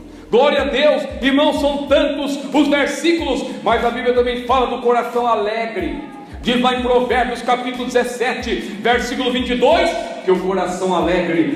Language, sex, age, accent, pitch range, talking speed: Portuguese, male, 50-69, Brazilian, 210-280 Hz, 145 wpm